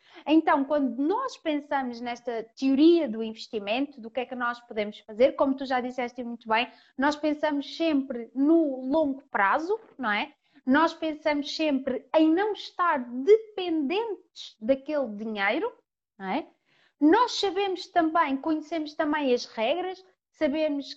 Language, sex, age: Portuguese, female, 20-39